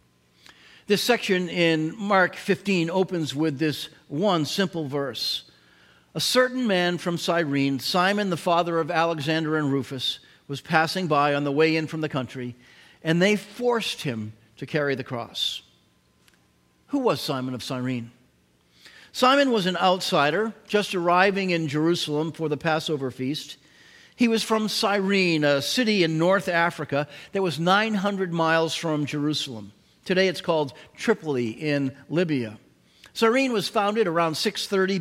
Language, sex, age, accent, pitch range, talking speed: English, male, 50-69, American, 145-195 Hz, 145 wpm